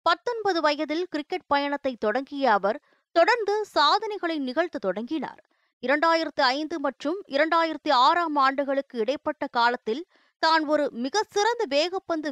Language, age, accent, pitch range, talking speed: Tamil, 20-39, native, 275-350 Hz, 95 wpm